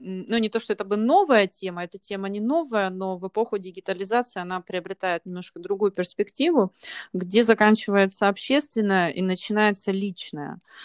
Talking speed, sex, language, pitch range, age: 150 wpm, female, Russian, 185-215 Hz, 30-49